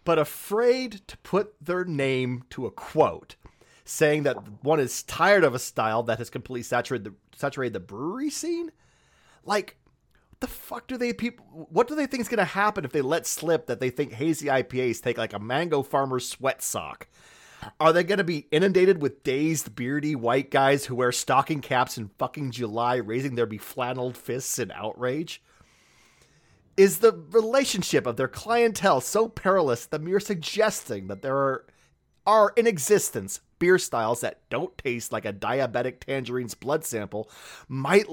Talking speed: 170 wpm